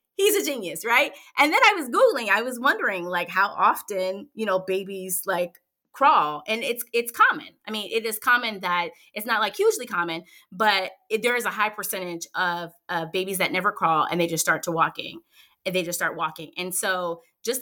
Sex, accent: female, American